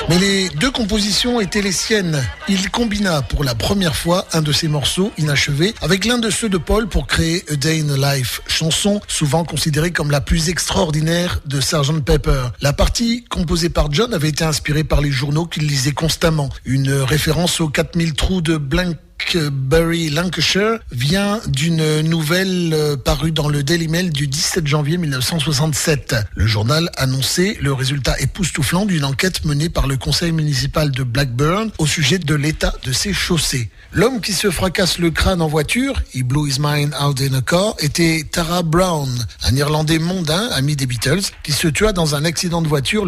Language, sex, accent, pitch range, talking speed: French, male, French, 140-175 Hz, 180 wpm